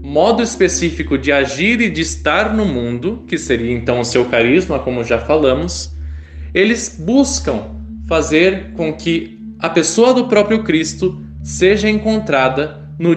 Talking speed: 140 wpm